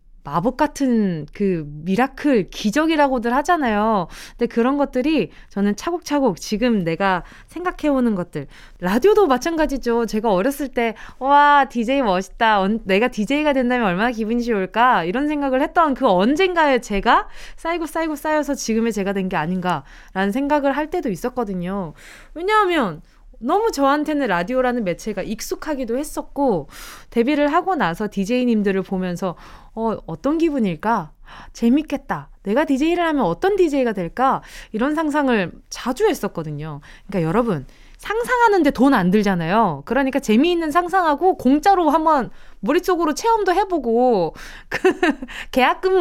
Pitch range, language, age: 200-305 Hz, Korean, 20-39